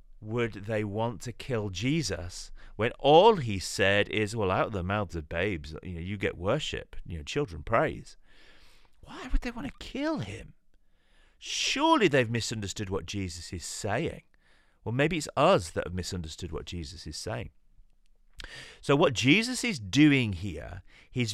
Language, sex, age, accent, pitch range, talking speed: English, male, 30-49, British, 95-135 Hz, 165 wpm